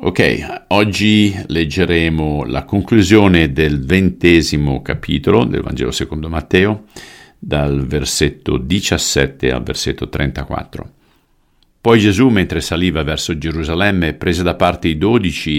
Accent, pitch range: native, 75-100 Hz